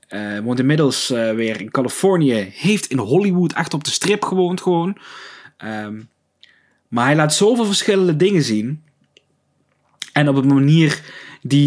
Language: Dutch